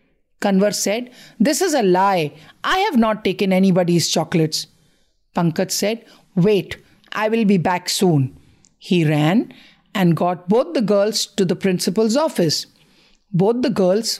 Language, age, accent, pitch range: English, 50-69, Indian, 180-235 Hz